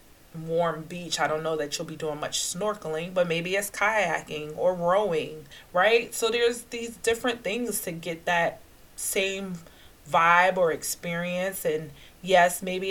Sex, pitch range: female, 160-200 Hz